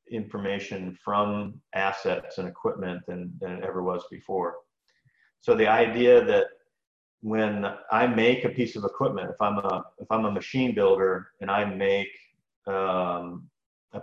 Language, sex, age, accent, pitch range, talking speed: English, male, 40-59, American, 100-135 Hz, 150 wpm